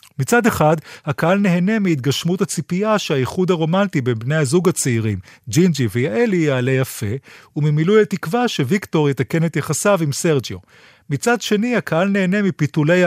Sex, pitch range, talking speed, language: male, 130-175 Hz, 135 wpm, Hebrew